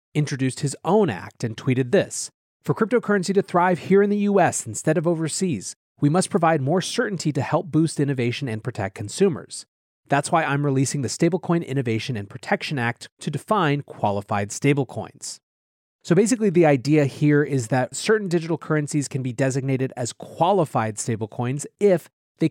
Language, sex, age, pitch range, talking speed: English, male, 30-49, 125-165 Hz, 165 wpm